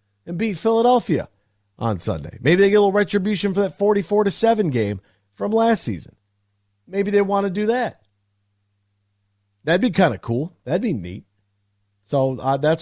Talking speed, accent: 175 wpm, American